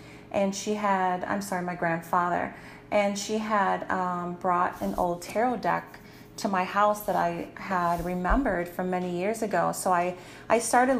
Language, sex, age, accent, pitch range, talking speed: English, female, 30-49, American, 180-210 Hz, 170 wpm